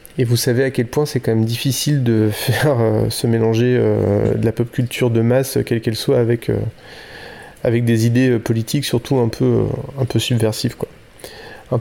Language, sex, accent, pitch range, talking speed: French, male, French, 115-140 Hz, 205 wpm